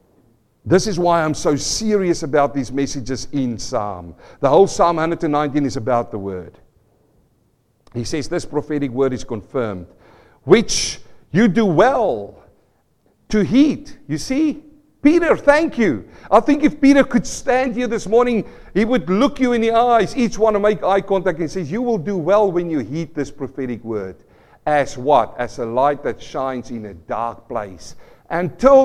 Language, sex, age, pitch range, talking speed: English, male, 50-69, 115-185 Hz, 175 wpm